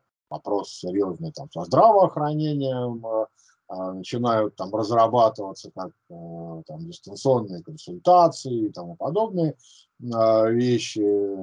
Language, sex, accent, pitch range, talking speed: Russian, male, native, 105-155 Hz, 95 wpm